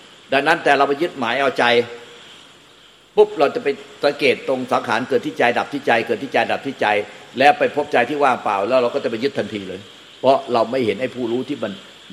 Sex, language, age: male, Thai, 60-79